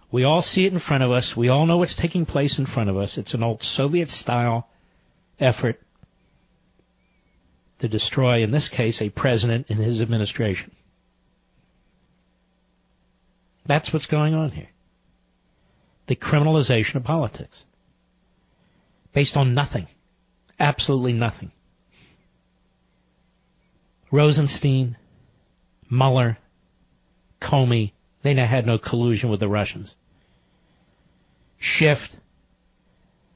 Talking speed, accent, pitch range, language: 105 wpm, American, 115-140 Hz, English